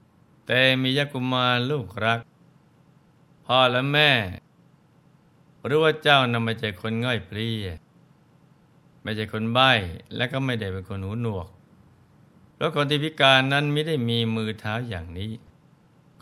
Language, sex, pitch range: Thai, male, 110-135 Hz